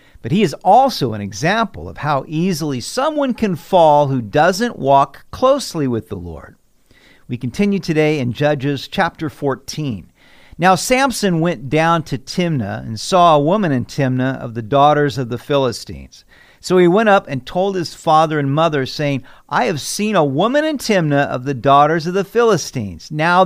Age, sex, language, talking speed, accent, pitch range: 50-69, male, English, 175 wpm, American, 135-205 Hz